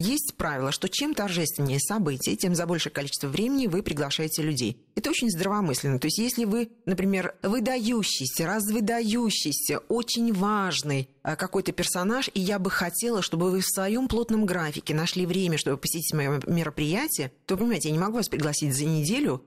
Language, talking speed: Russian, 165 wpm